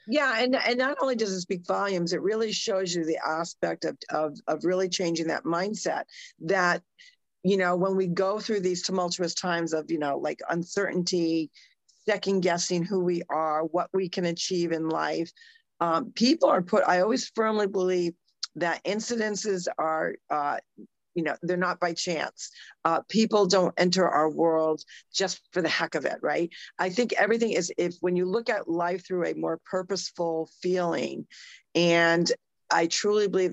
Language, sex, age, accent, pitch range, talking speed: English, female, 50-69, American, 165-195 Hz, 170 wpm